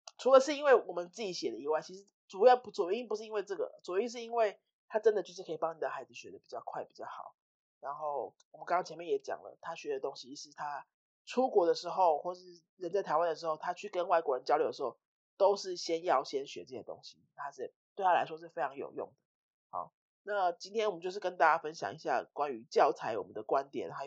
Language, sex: Spanish, male